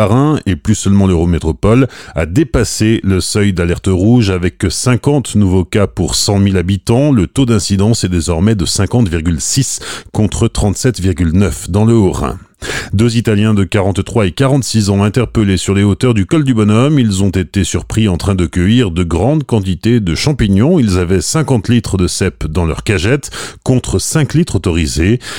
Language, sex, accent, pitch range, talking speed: French, male, French, 90-115 Hz, 170 wpm